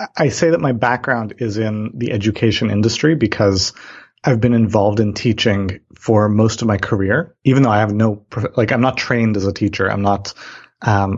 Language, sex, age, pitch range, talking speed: English, male, 30-49, 100-120 Hz, 195 wpm